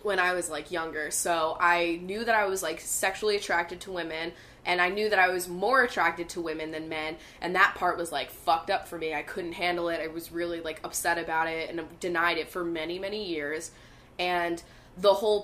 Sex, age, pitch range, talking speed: female, 10-29, 165-195 Hz, 225 wpm